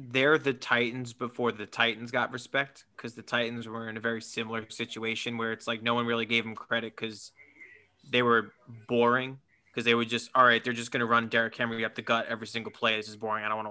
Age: 20-39